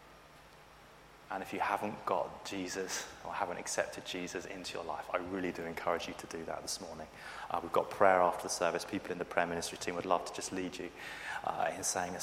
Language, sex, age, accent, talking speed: English, male, 30-49, British, 225 wpm